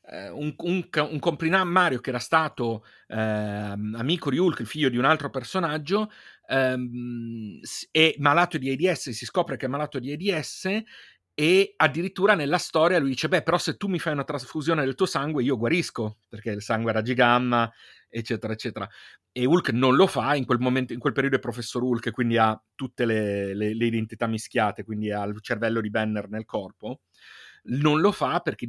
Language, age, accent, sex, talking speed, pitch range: Italian, 40-59, native, male, 190 wpm, 115-155 Hz